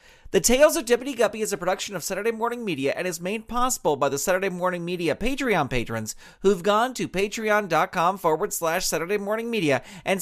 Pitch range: 180-240 Hz